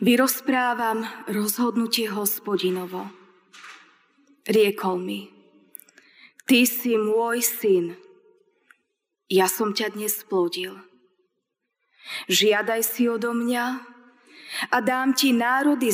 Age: 20-39